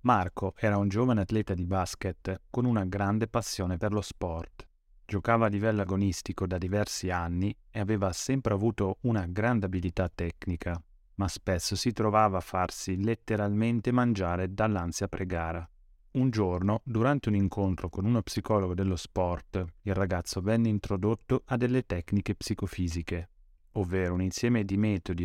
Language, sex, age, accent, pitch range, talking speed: Italian, male, 30-49, native, 90-110 Hz, 145 wpm